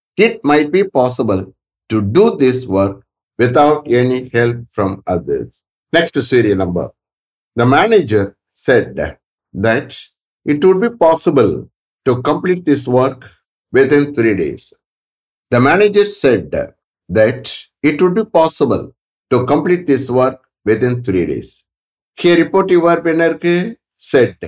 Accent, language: Indian, English